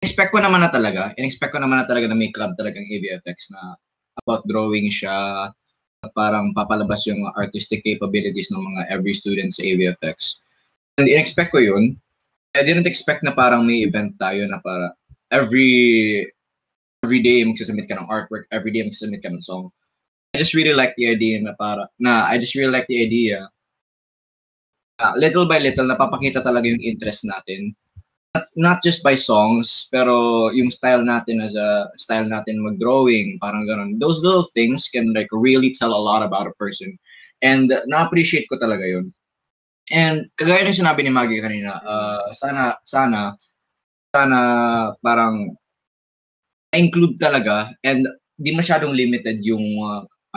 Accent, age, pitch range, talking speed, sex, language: native, 20-39, 105-135 Hz, 160 wpm, male, Filipino